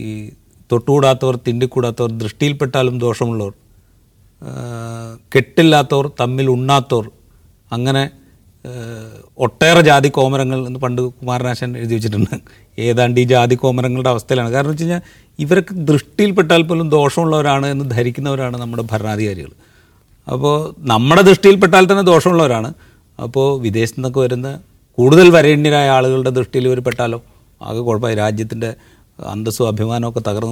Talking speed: 60 wpm